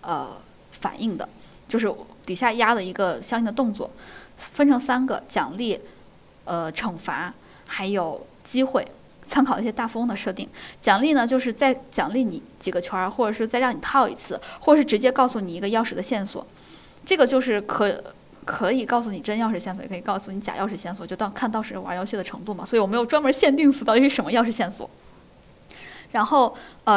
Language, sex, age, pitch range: Chinese, female, 10-29, 190-245 Hz